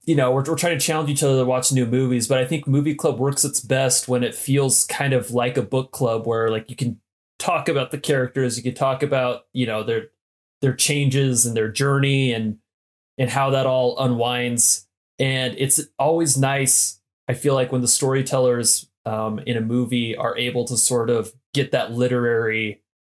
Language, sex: English, male